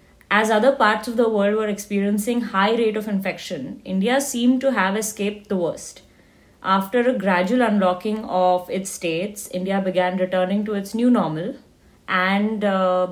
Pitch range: 185-225 Hz